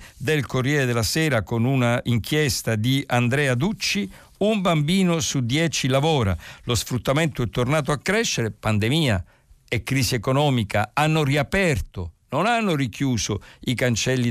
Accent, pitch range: native, 105-135 Hz